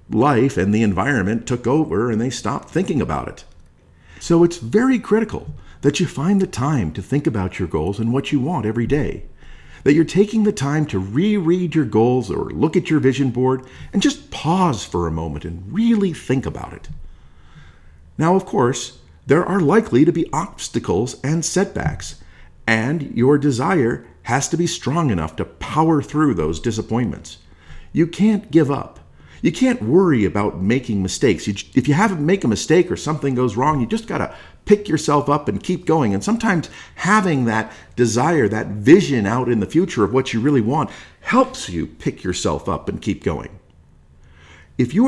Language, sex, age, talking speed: English, male, 50-69, 185 wpm